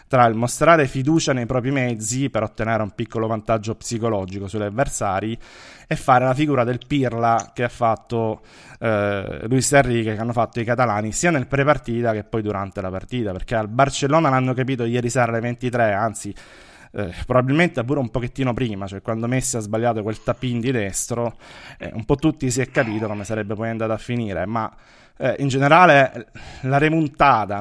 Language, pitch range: Italian, 110-130 Hz